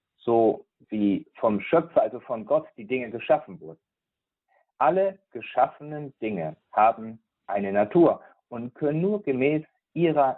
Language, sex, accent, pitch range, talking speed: German, male, German, 115-170 Hz, 125 wpm